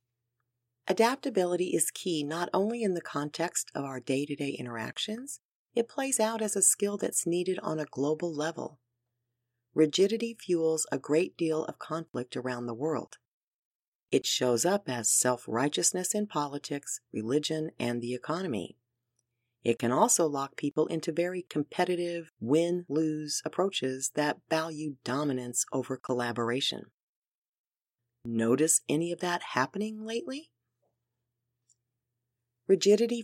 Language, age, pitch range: English, 40-59, 125-180 Hz